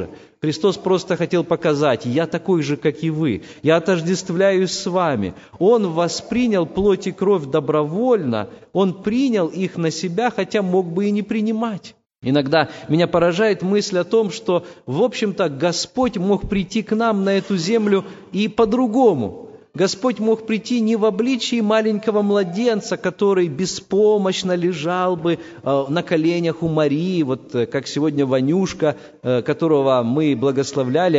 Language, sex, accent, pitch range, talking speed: Russian, male, native, 155-205 Hz, 140 wpm